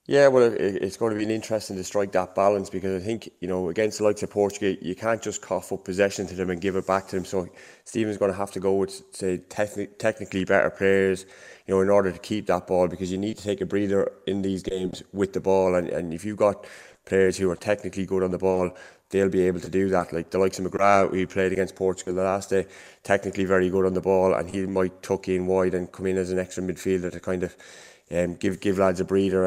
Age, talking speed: 20-39, 265 wpm